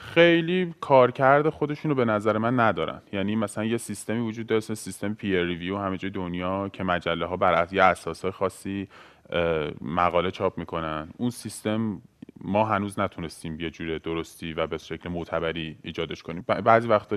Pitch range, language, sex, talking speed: 95-125 Hz, Persian, male, 160 wpm